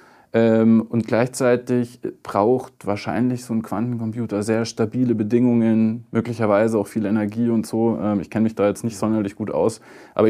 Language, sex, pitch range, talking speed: German, male, 100-125 Hz, 165 wpm